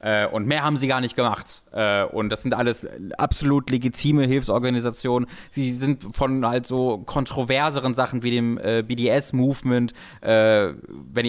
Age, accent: 20-39, German